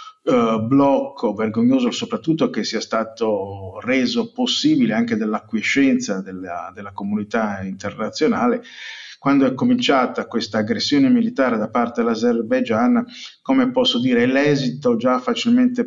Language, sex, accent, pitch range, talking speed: Italian, male, native, 155-250 Hz, 115 wpm